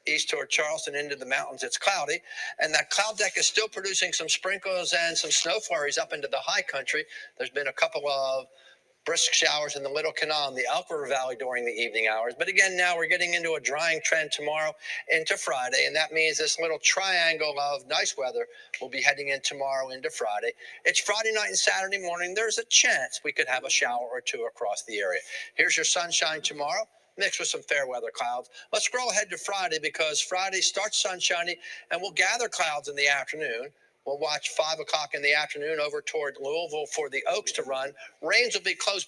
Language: English